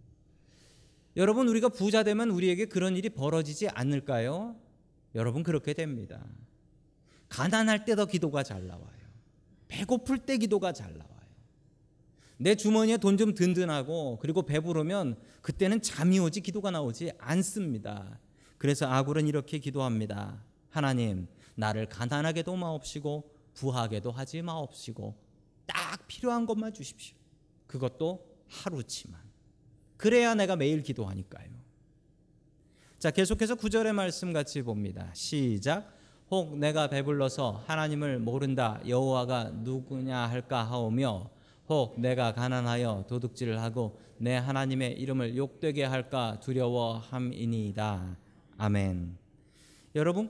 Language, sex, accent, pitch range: Korean, male, native, 120-170 Hz